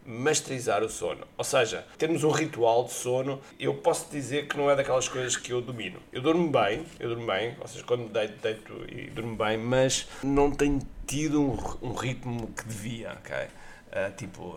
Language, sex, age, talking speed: Portuguese, male, 20-39, 195 wpm